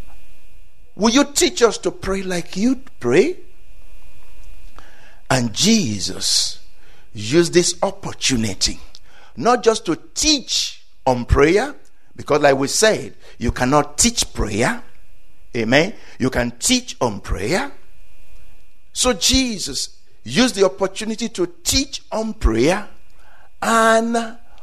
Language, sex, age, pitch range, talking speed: English, male, 60-79, 165-250 Hz, 105 wpm